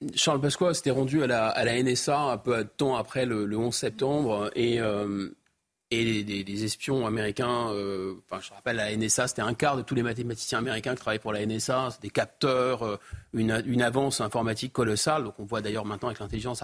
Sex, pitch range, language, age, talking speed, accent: male, 115-155 Hz, French, 30-49, 210 wpm, French